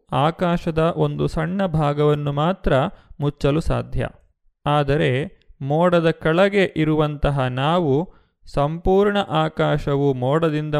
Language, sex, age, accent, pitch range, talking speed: Kannada, male, 30-49, native, 130-160 Hz, 85 wpm